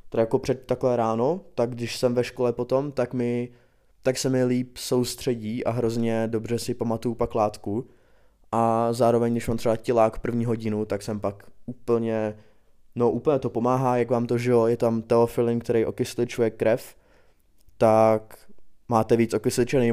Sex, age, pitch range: male, 20-39, 110-125 Hz